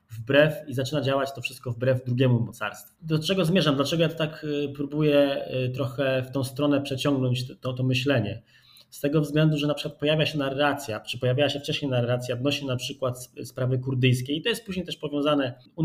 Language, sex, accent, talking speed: Polish, male, native, 190 wpm